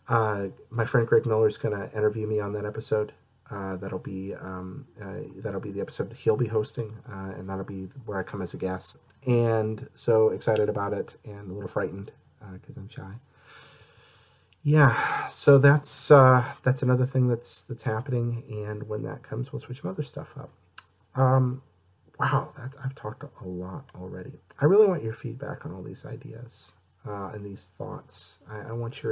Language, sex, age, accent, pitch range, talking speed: English, male, 30-49, American, 95-130 Hz, 190 wpm